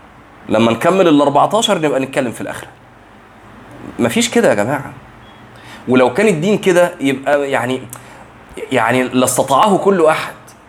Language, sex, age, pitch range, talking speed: Arabic, male, 20-39, 120-170 Hz, 125 wpm